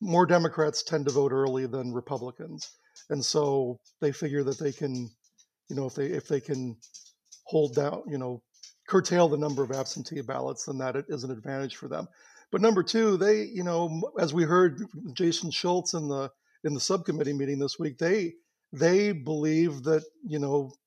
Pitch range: 140-165 Hz